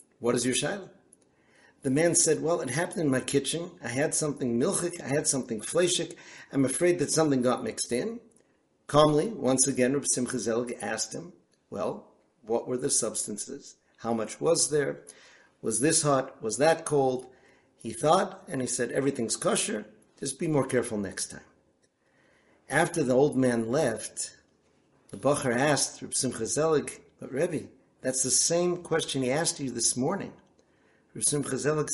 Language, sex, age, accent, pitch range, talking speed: English, male, 50-69, American, 125-160 Hz, 160 wpm